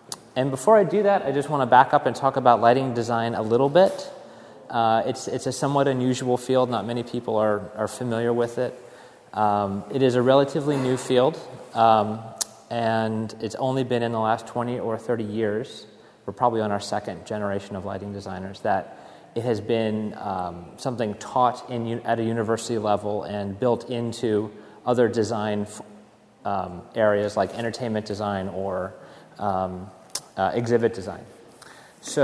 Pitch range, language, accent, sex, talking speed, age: 105-125 Hz, English, American, male, 170 wpm, 30-49